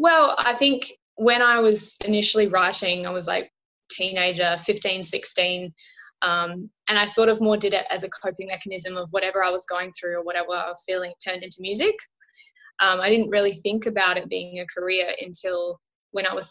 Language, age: English, 10-29